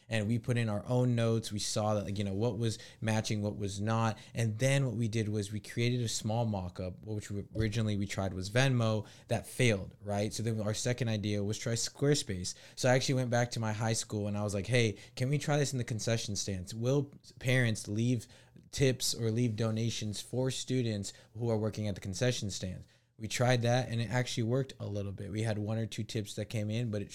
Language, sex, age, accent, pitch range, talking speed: English, male, 20-39, American, 105-120 Hz, 235 wpm